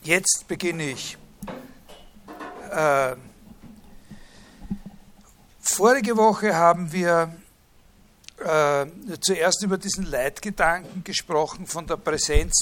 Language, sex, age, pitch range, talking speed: German, male, 60-79, 160-195 Hz, 80 wpm